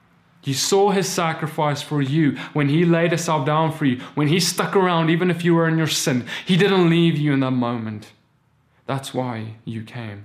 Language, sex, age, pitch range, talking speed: English, male, 20-39, 130-160 Hz, 205 wpm